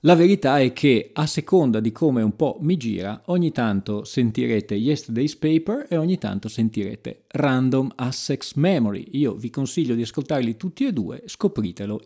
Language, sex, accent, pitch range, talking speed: Italian, male, native, 110-170 Hz, 165 wpm